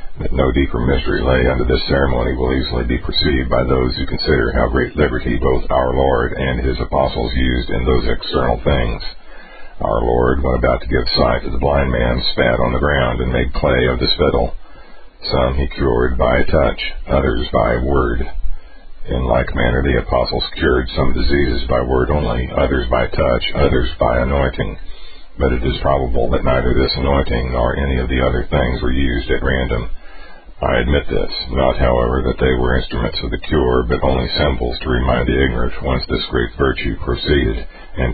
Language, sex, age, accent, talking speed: English, male, 50-69, American, 185 wpm